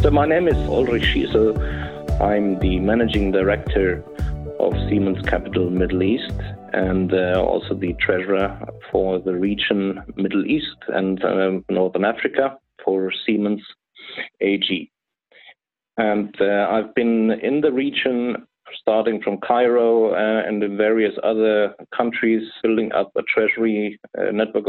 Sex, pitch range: male, 95-110 Hz